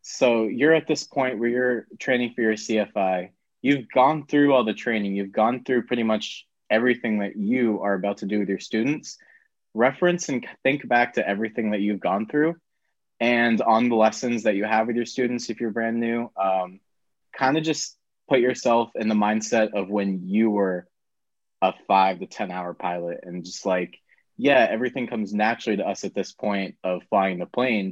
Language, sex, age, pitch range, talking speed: English, male, 20-39, 95-115 Hz, 195 wpm